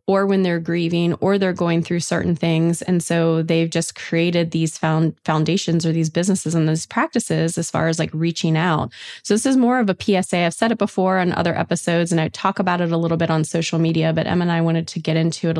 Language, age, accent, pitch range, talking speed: English, 20-39, American, 165-190 Hz, 245 wpm